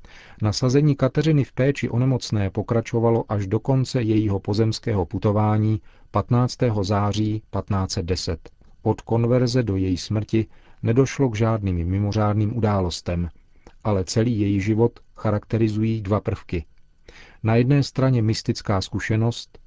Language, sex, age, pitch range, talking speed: Czech, male, 40-59, 100-115 Hz, 115 wpm